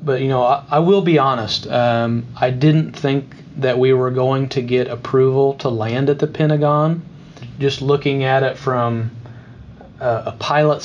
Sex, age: male, 40-59